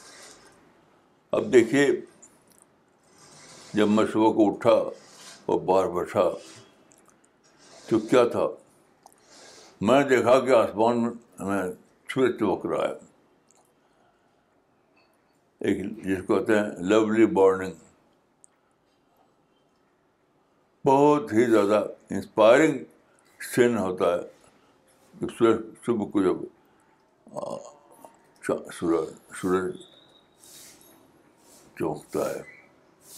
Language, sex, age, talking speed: Urdu, male, 60-79, 70 wpm